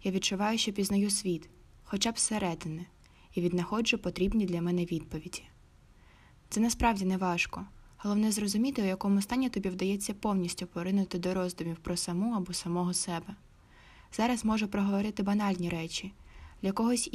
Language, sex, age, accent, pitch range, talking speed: Ukrainian, female, 20-39, native, 180-210 Hz, 140 wpm